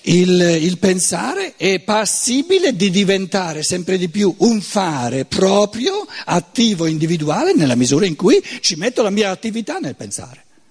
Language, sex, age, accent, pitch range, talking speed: Italian, male, 60-79, native, 150-210 Hz, 145 wpm